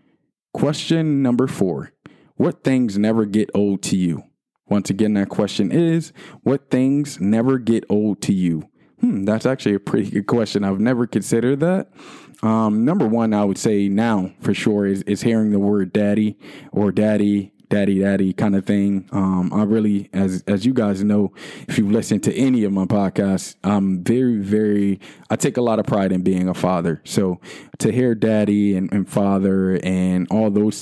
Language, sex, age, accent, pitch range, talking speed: English, male, 20-39, American, 100-115 Hz, 185 wpm